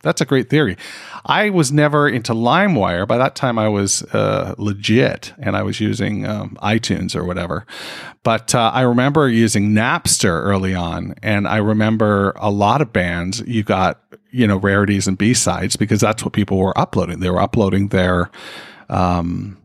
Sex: male